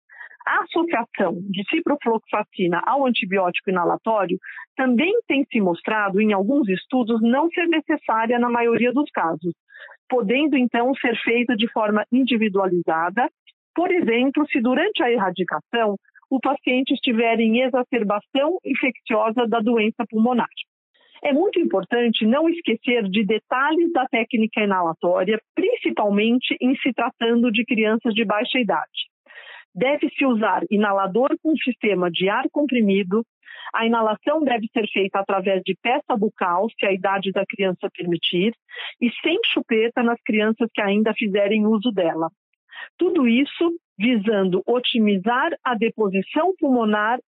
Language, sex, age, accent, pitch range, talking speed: Portuguese, female, 50-69, Brazilian, 210-260 Hz, 130 wpm